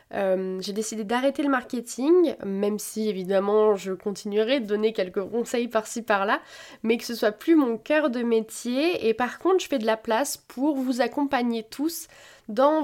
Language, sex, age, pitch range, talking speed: French, female, 20-39, 215-280 Hz, 180 wpm